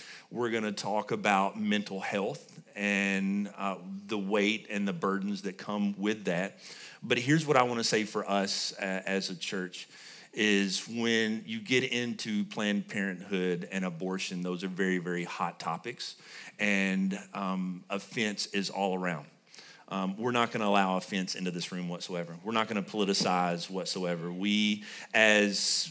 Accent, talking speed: American, 165 wpm